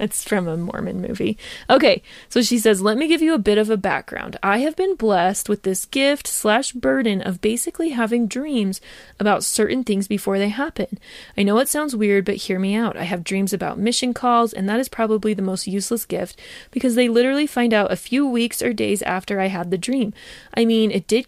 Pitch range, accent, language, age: 195-240 Hz, American, English, 20-39